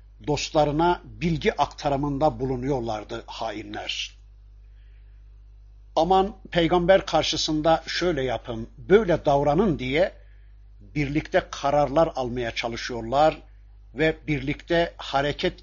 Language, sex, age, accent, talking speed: Turkish, male, 60-79, native, 75 wpm